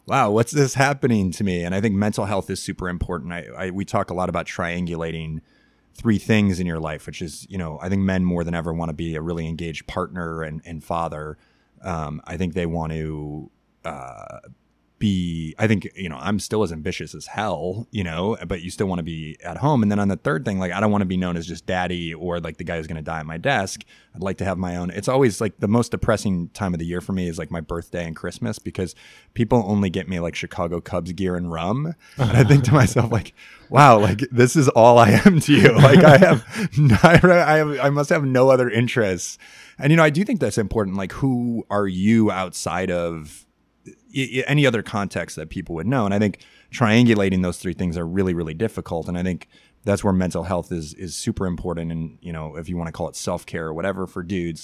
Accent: American